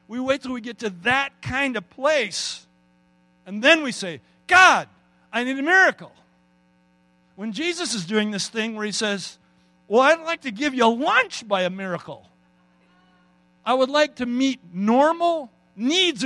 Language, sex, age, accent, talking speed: English, male, 50-69, American, 165 wpm